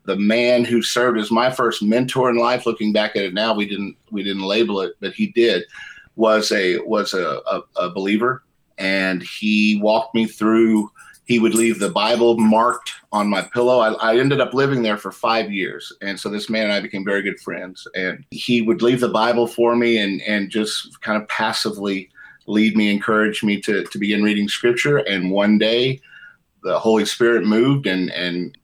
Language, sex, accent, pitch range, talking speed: English, male, American, 105-120 Hz, 200 wpm